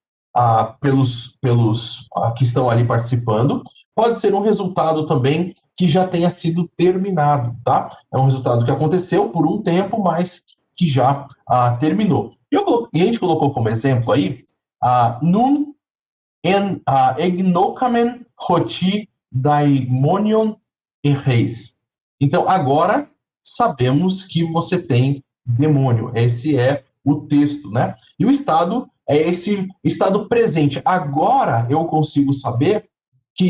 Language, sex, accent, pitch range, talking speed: Portuguese, male, Brazilian, 130-185 Hz, 125 wpm